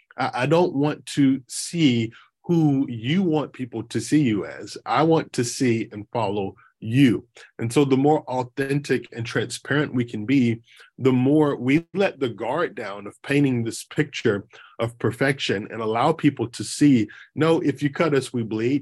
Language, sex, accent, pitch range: English, male, American, 115-140 Hz